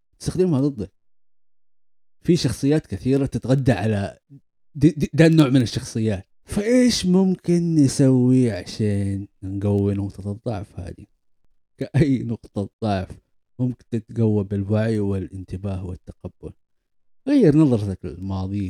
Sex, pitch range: male, 100-135 Hz